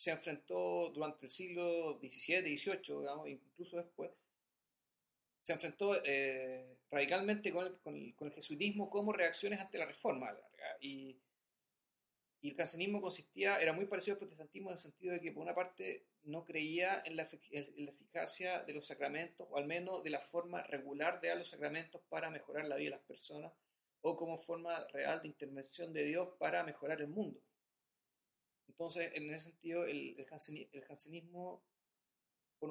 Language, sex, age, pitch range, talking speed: Spanish, male, 40-59, 145-180 Hz, 170 wpm